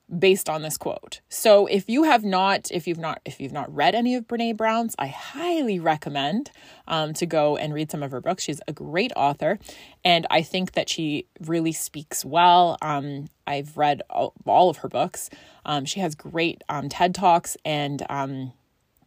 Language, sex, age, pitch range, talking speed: English, female, 20-39, 155-205 Hz, 190 wpm